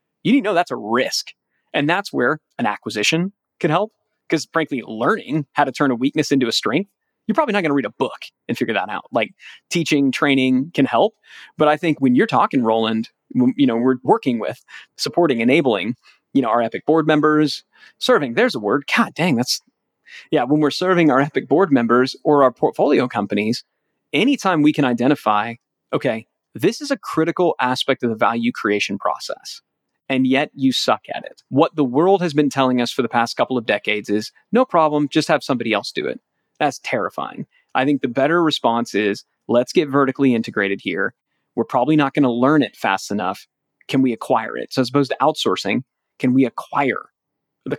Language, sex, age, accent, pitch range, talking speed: English, male, 30-49, American, 120-155 Hz, 195 wpm